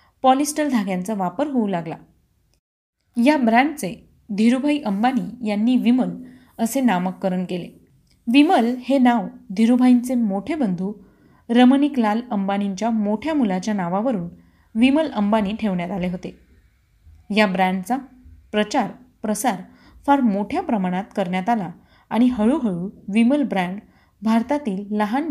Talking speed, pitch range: 105 wpm, 195-250 Hz